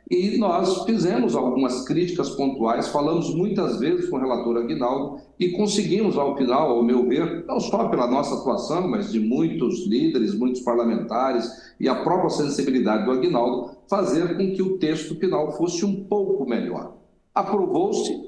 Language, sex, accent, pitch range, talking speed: English, male, Brazilian, 130-195 Hz, 160 wpm